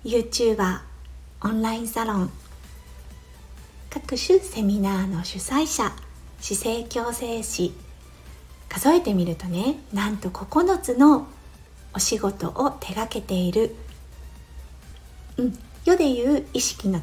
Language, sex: Japanese, female